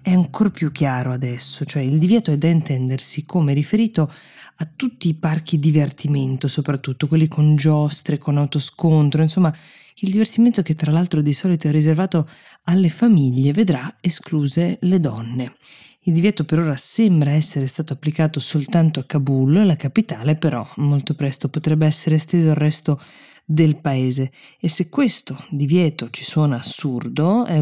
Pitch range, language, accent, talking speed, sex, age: 135-160 Hz, Italian, native, 155 wpm, female, 20-39